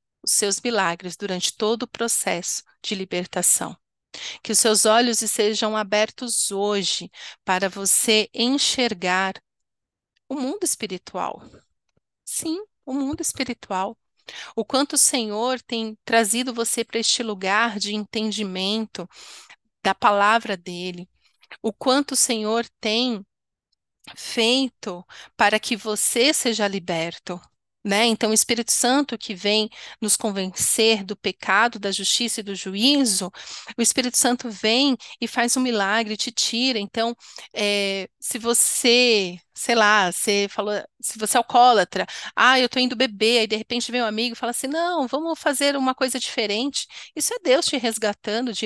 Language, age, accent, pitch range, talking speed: Portuguese, 40-59, Brazilian, 205-245 Hz, 140 wpm